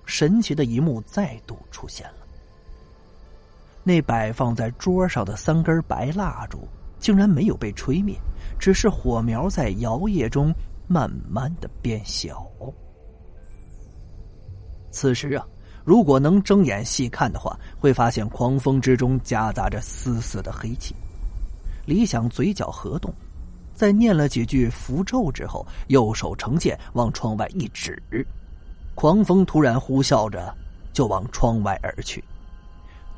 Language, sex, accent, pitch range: Chinese, male, native, 90-140 Hz